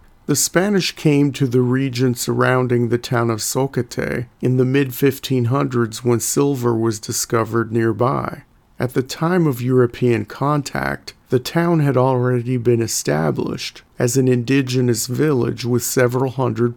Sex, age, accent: male, 40-59, American